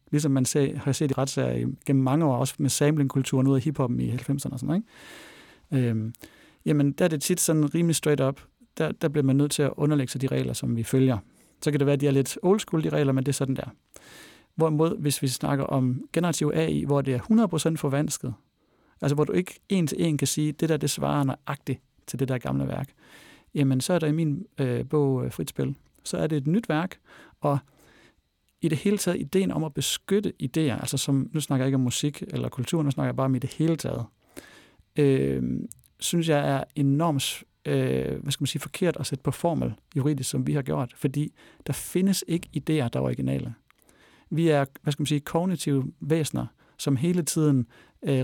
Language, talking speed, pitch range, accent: Danish, 220 wpm, 135-155 Hz, native